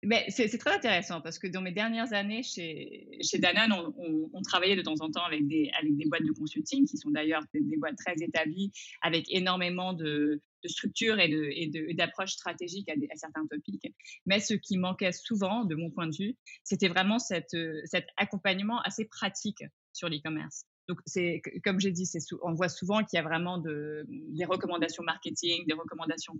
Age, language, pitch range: 20-39, French, 165-200 Hz